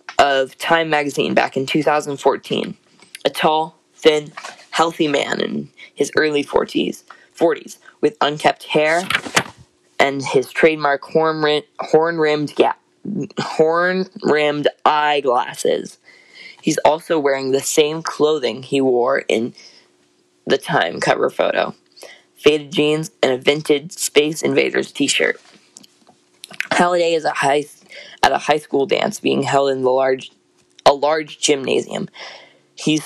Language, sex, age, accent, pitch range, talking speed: English, female, 10-29, American, 140-165 Hz, 115 wpm